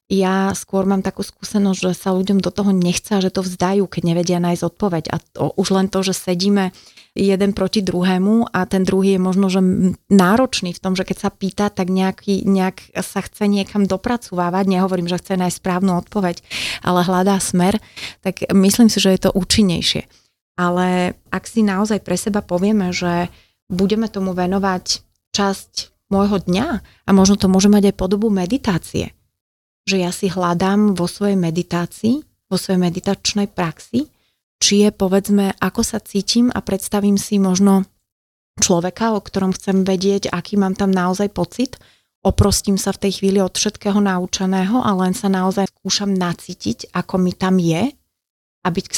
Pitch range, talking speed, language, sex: 180-200 Hz, 170 wpm, Slovak, female